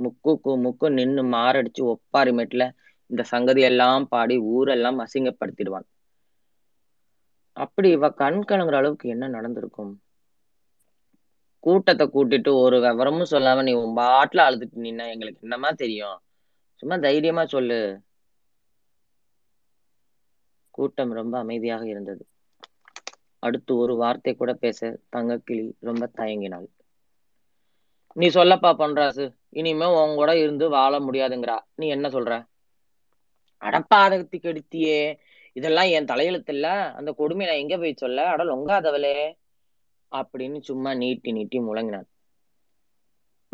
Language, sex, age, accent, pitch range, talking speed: Tamil, female, 20-39, native, 120-160 Hz, 100 wpm